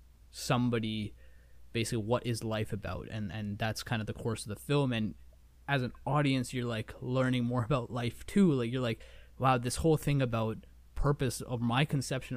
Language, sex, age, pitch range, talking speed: English, male, 20-39, 100-130 Hz, 190 wpm